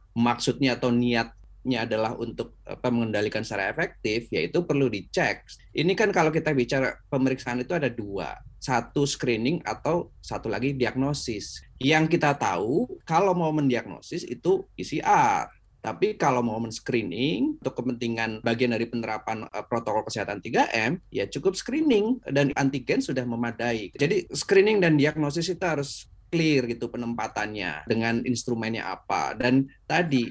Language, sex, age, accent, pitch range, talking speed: Indonesian, male, 20-39, native, 120-160 Hz, 140 wpm